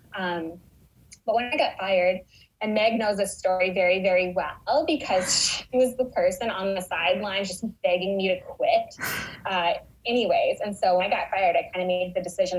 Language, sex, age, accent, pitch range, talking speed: English, female, 10-29, American, 175-210 Hz, 195 wpm